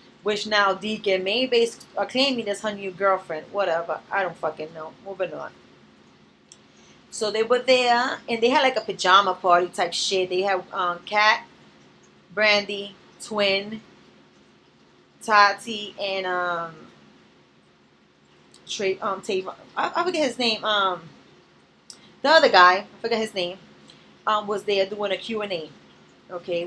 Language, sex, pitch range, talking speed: English, female, 180-230 Hz, 135 wpm